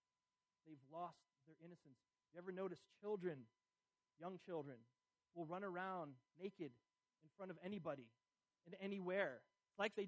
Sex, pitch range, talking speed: male, 155-205 Hz, 135 wpm